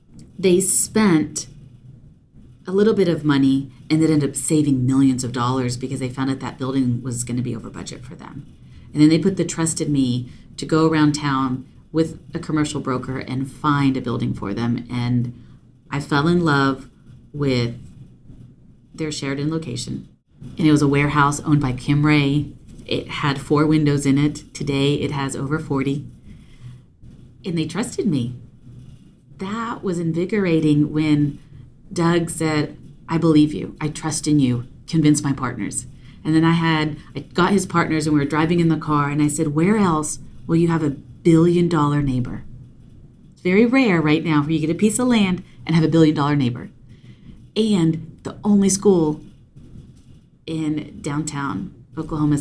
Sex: female